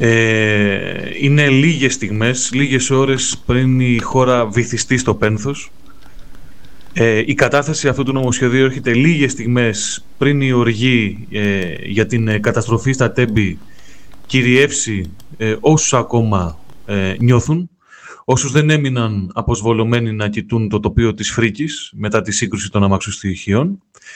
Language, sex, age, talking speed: Greek, male, 30-49, 125 wpm